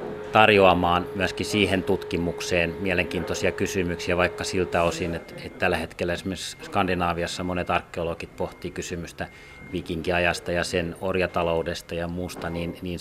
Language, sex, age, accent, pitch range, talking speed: Finnish, male, 30-49, native, 85-95 Hz, 125 wpm